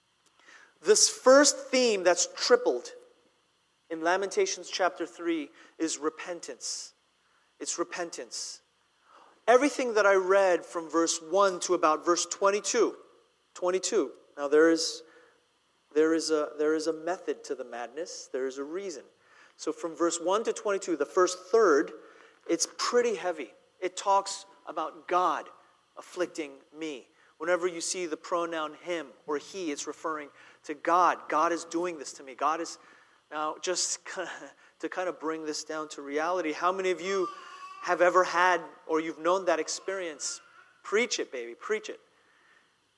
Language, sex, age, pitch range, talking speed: English, male, 30-49, 165-260 Hz, 145 wpm